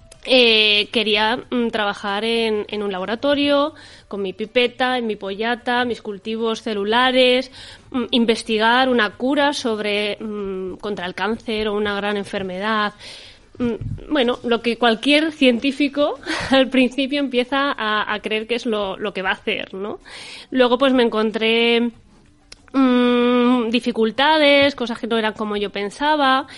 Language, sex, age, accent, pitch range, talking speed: Spanish, female, 20-39, Spanish, 210-245 Hz, 140 wpm